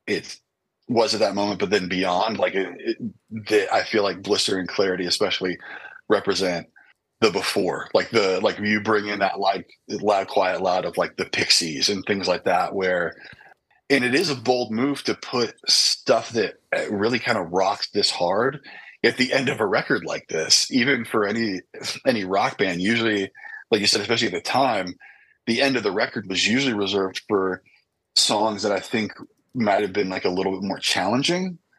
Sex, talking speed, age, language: male, 195 wpm, 30-49, English